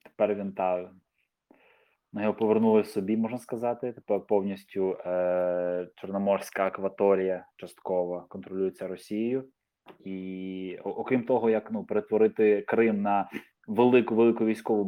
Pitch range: 100-125 Hz